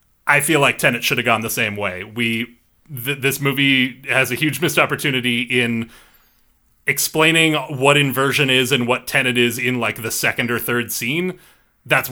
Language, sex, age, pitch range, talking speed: English, male, 30-49, 115-140 Hz, 180 wpm